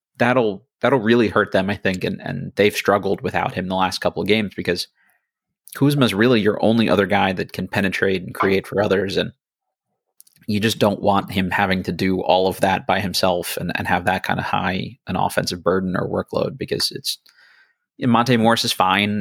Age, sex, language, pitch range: 30-49, male, English, 95-115 Hz